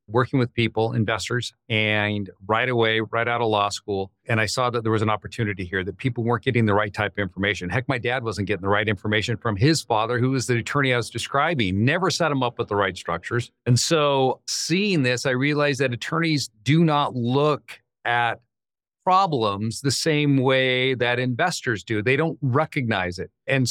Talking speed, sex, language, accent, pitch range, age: 200 wpm, male, English, American, 105-125 Hz, 40-59